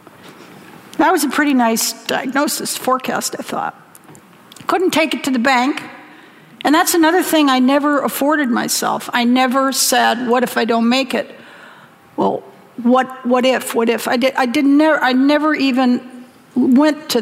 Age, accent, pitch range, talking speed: 50-69, American, 230-295 Hz, 165 wpm